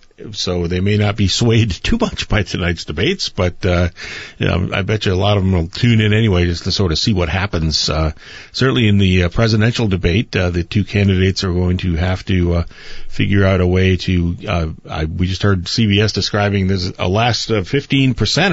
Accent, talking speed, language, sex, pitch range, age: American, 215 wpm, English, male, 90-105 Hz, 40-59